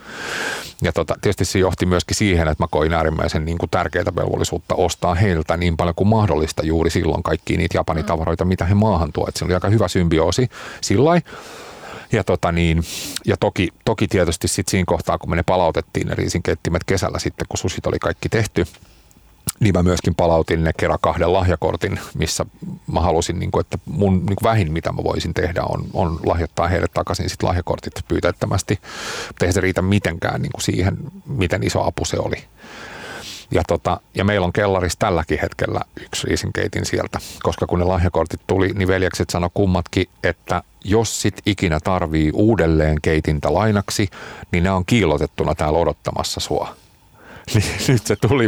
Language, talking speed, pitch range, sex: Finnish, 160 wpm, 85-105 Hz, male